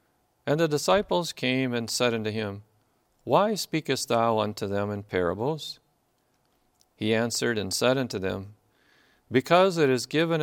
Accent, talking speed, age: American, 145 wpm, 50-69